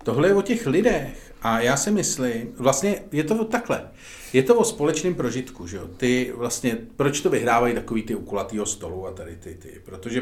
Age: 40-59